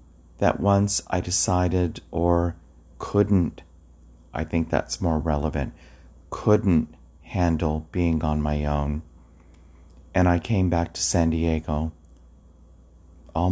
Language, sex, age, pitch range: English, male, 40-59, 75-85 Hz